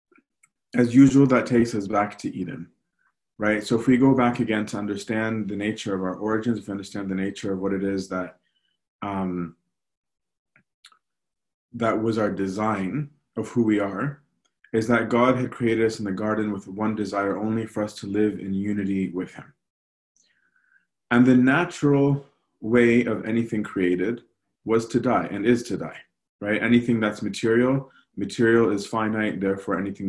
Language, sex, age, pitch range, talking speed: English, male, 30-49, 100-120 Hz, 170 wpm